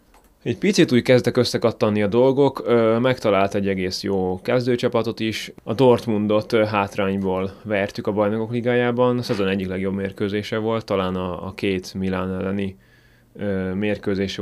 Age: 20-39